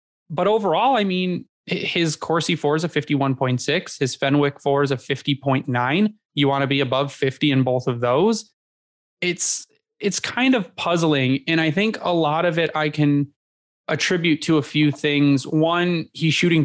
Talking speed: 175 wpm